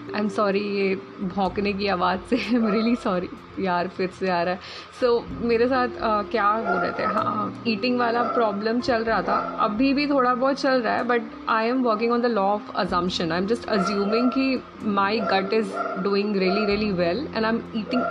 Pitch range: 190-235 Hz